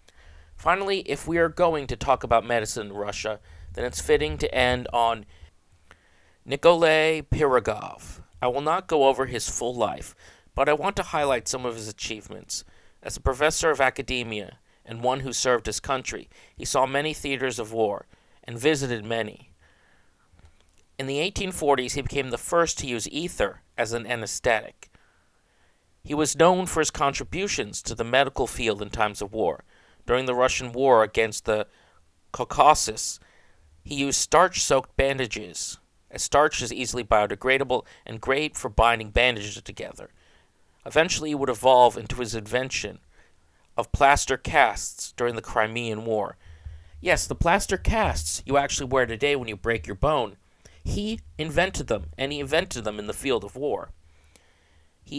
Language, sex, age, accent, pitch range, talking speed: English, male, 50-69, American, 95-140 Hz, 160 wpm